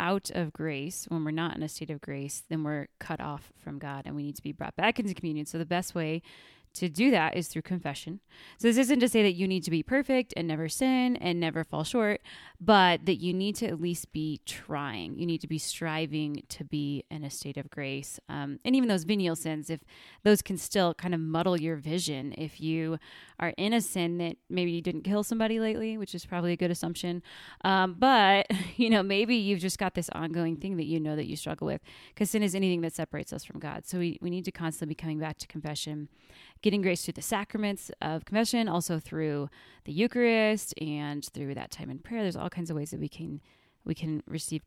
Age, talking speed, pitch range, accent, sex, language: 20-39, 235 wpm, 155-195 Hz, American, female, English